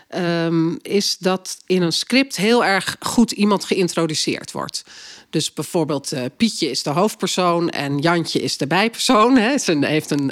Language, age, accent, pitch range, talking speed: Dutch, 40-59, Dutch, 155-195 Hz, 165 wpm